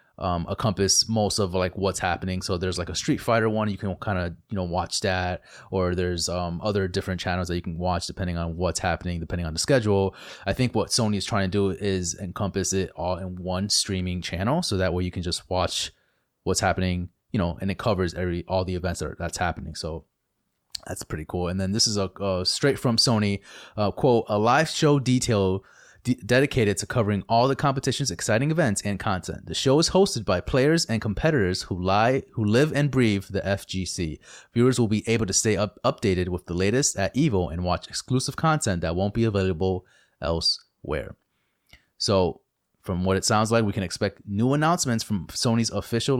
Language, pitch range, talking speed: English, 90-115 Hz, 205 wpm